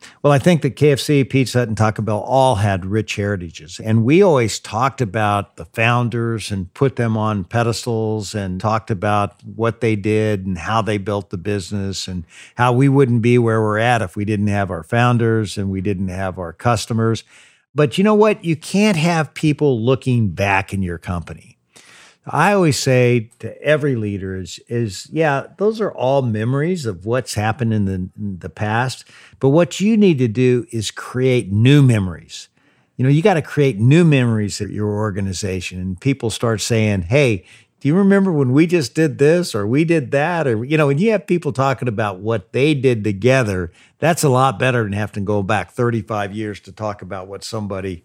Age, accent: 50-69, American